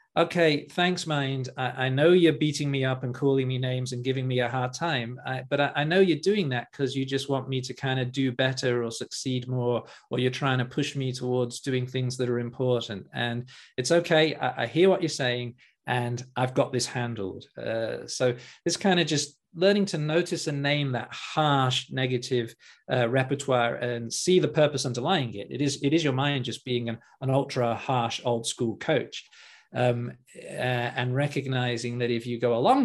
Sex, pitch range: male, 125-150 Hz